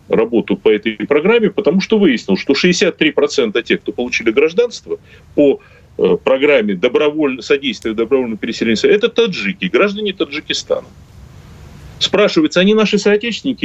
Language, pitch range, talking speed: Russian, 150-210 Hz, 125 wpm